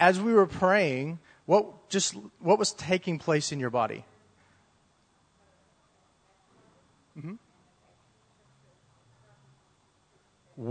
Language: English